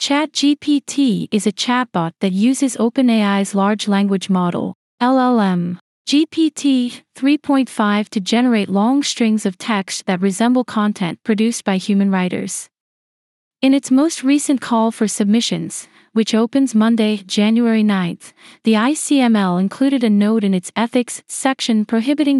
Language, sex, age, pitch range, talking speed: English, female, 40-59, 200-250 Hz, 125 wpm